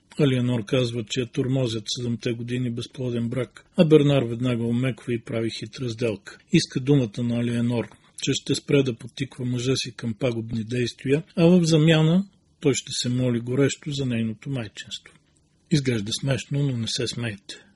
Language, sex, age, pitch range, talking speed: Bulgarian, male, 40-59, 120-140 Hz, 165 wpm